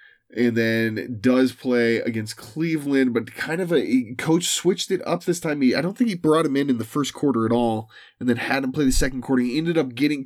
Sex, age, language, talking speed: male, 20-39, English, 250 wpm